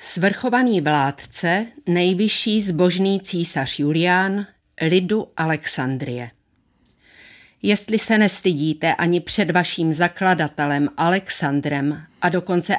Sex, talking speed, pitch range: female, 85 wpm, 160-195 Hz